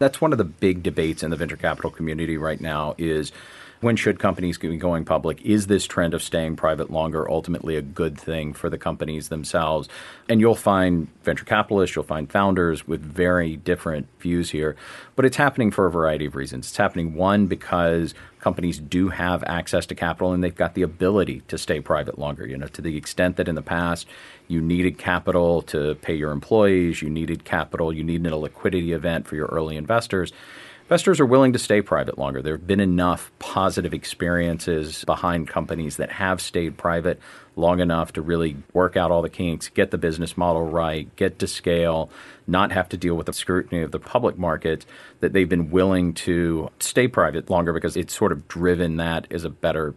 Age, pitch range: 40-59, 80-90 Hz